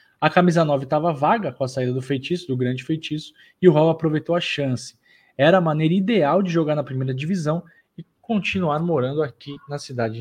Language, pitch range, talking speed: Portuguese, 130-170 Hz, 200 wpm